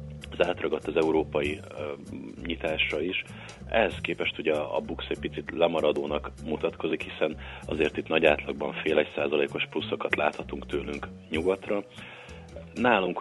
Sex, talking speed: male, 125 wpm